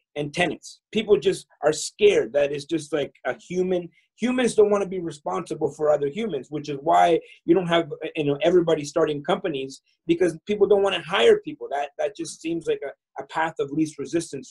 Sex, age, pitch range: male, 30-49, 165-225 Hz